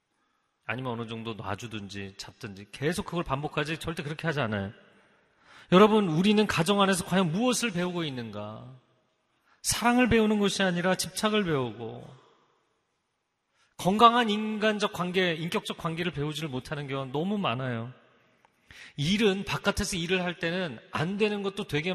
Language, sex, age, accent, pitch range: Korean, male, 40-59, native, 130-210 Hz